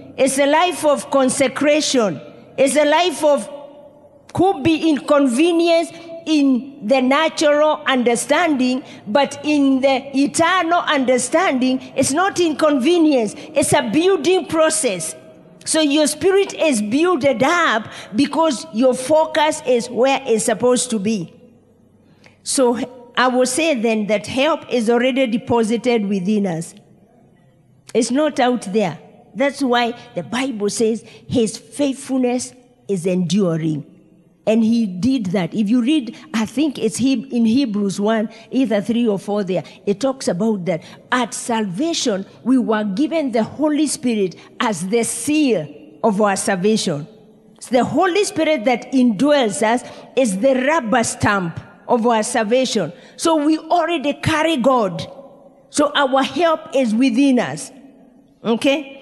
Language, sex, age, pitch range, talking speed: English, female, 40-59, 225-290 Hz, 130 wpm